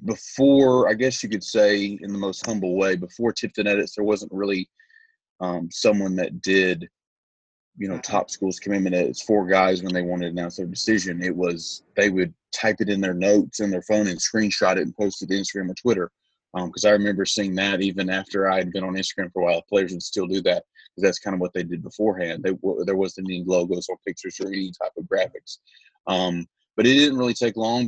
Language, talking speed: English, 230 wpm